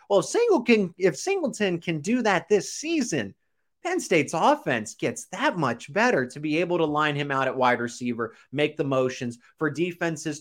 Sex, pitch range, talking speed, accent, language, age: male, 125-155 Hz, 175 wpm, American, English, 30-49